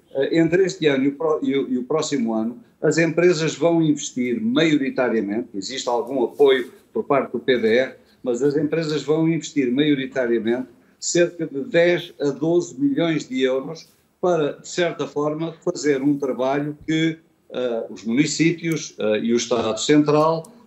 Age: 50-69